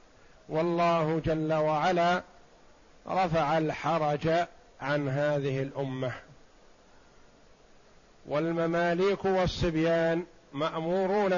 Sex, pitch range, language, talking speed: male, 160-190 Hz, Arabic, 60 wpm